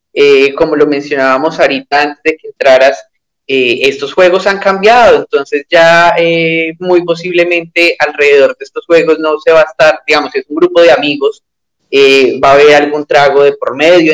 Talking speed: 185 wpm